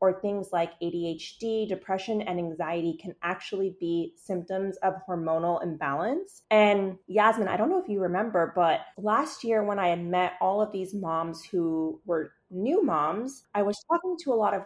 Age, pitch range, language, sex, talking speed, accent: 30-49, 180-215 Hz, English, female, 180 wpm, American